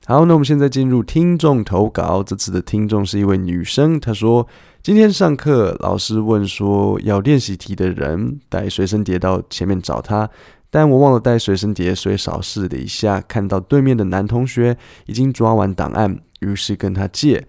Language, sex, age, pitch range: Chinese, male, 20-39, 95-115 Hz